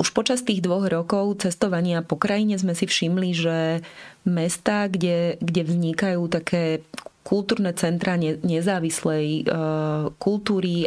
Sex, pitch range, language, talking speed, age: female, 160-185 Hz, Slovak, 120 wpm, 30-49